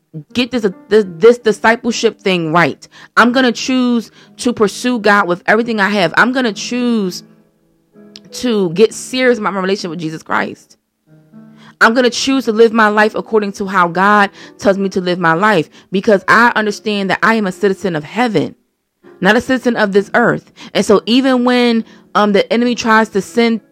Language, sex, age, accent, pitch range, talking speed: English, female, 30-49, American, 185-240 Hz, 180 wpm